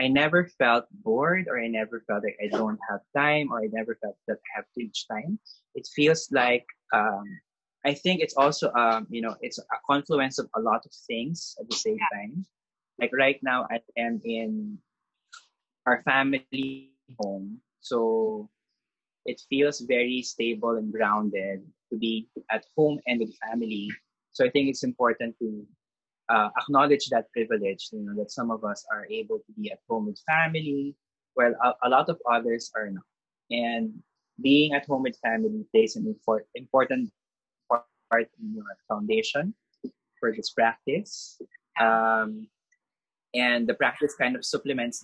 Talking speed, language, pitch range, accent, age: 165 wpm, English, 115-175 Hz, Filipino, 20-39